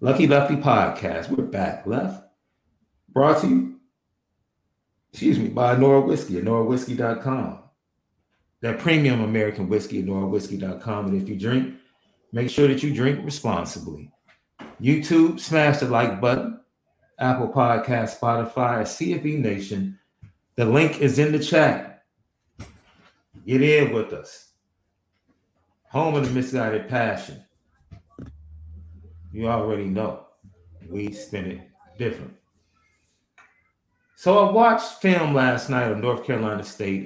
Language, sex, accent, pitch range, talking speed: English, male, American, 100-145 Hz, 120 wpm